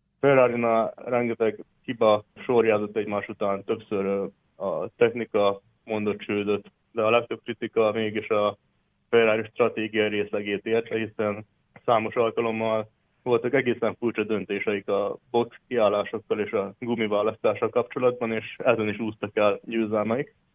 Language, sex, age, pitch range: Hungarian, male, 20-39, 105-115 Hz